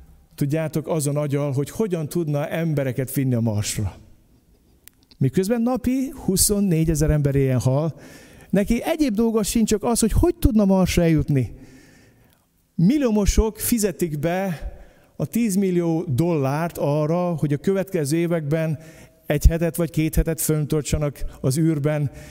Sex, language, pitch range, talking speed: male, Hungarian, 145-225 Hz, 125 wpm